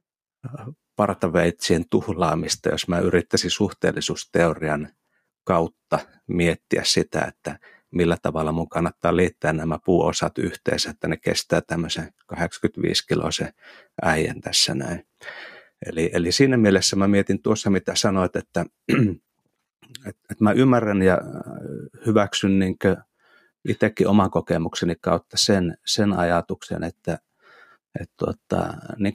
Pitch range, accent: 85-100 Hz, native